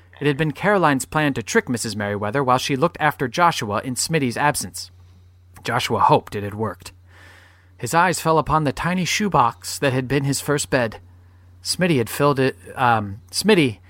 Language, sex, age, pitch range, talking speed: English, male, 30-49, 100-145 Hz, 155 wpm